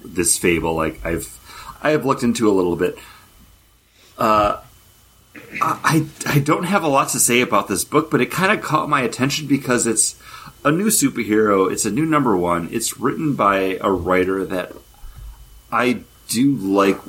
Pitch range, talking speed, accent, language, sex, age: 95-125 Hz, 170 wpm, American, English, male, 30-49